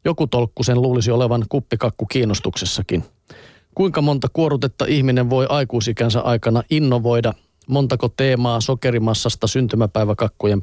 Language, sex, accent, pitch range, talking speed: Finnish, male, native, 110-140 Hz, 105 wpm